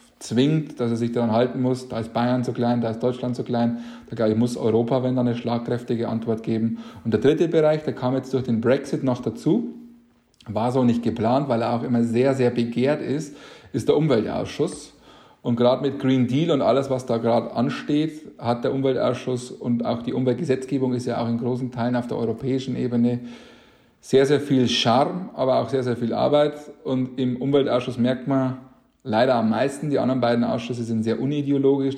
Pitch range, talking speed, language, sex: 120-130 Hz, 200 wpm, English, male